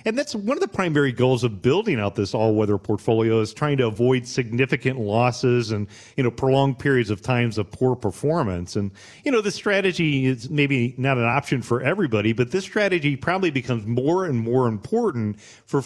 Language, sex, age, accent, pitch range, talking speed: English, male, 40-59, American, 115-145 Hz, 195 wpm